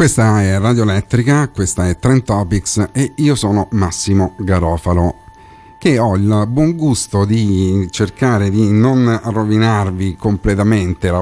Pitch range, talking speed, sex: 90-110 Hz, 130 wpm, male